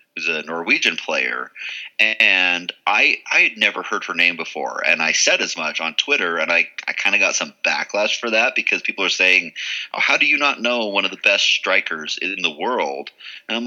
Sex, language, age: male, English, 30-49